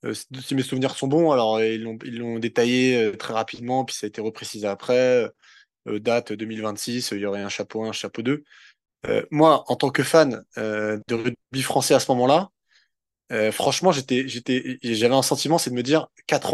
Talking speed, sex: 220 wpm, male